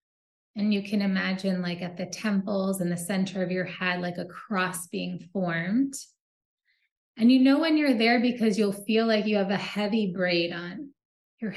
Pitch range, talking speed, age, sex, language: 185-225 Hz, 185 wpm, 20-39, female, English